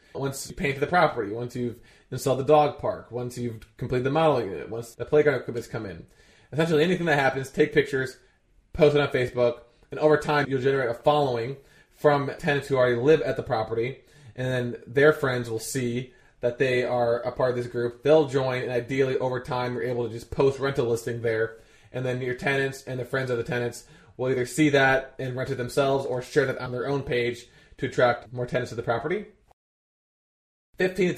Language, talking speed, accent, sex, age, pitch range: English, 215 wpm, American, male, 20-39, 120-140 Hz